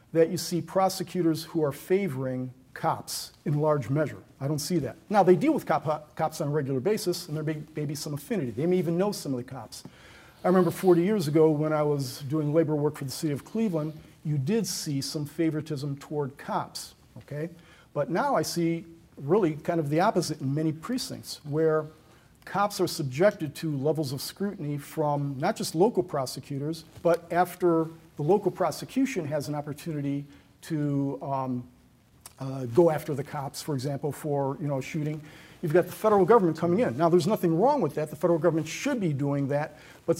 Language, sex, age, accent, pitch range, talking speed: English, male, 50-69, American, 145-175 Hz, 195 wpm